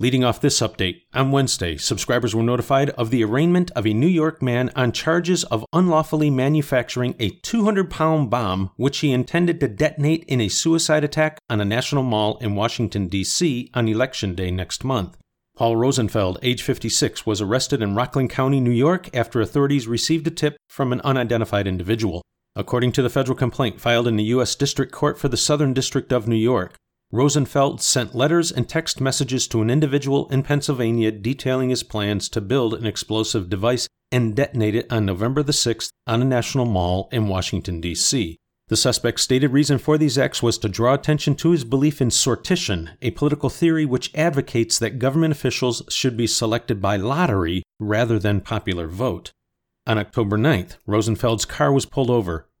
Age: 40-59